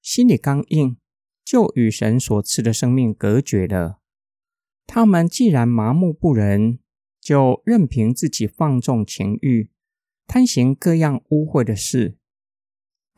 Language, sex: Chinese, male